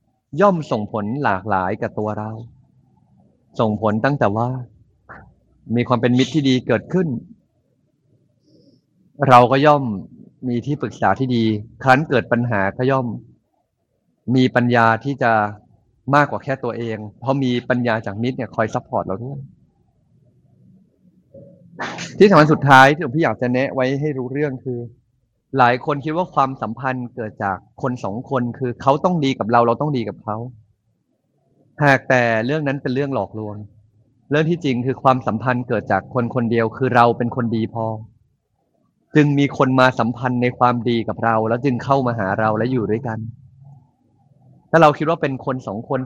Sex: male